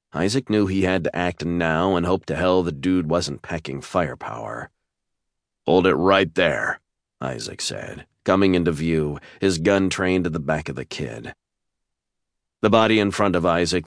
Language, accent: English, American